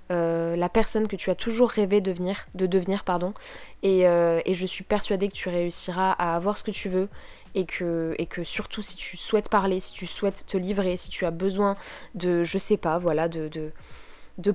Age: 20-39